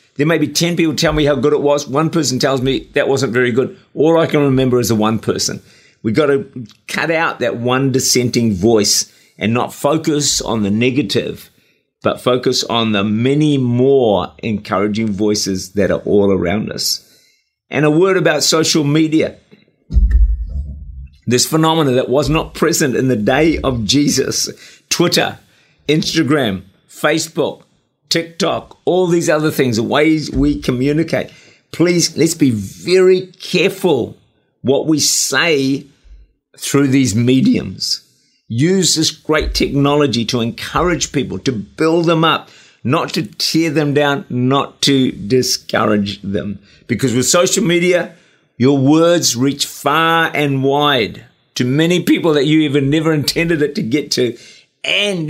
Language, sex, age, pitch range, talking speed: English, male, 50-69, 120-160 Hz, 150 wpm